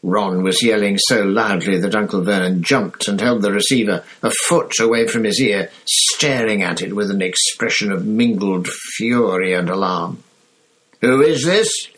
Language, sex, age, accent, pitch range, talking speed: English, male, 60-79, British, 90-145 Hz, 165 wpm